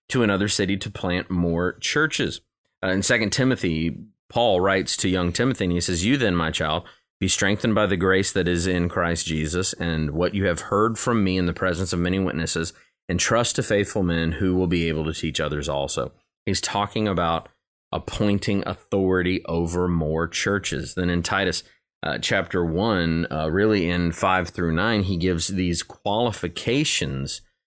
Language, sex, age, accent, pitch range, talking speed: English, male, 30-49, American, 85-110 Hz, 180 wpm